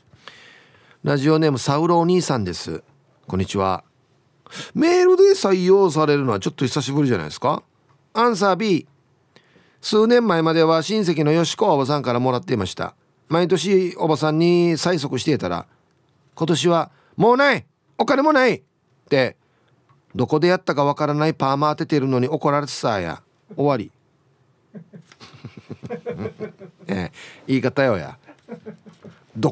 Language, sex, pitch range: Japanese, male, 130-185 Hz